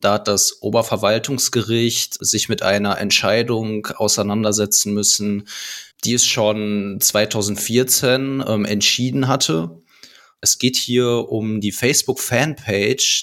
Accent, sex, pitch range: German, male, 100-110 Hz